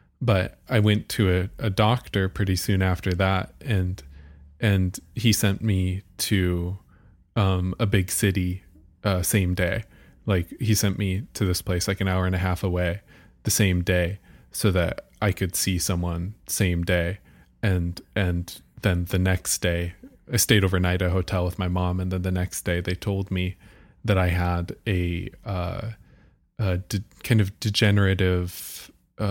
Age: 20-39